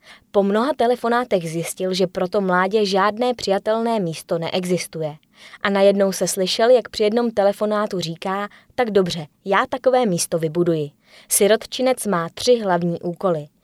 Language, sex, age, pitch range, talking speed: Czech, female, 20-39, 175-220 Hz, 135 wpm